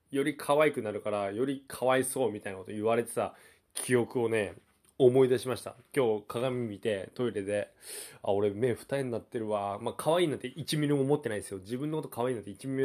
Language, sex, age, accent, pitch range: Japanese, male, 20-39, native, 105-135 Hz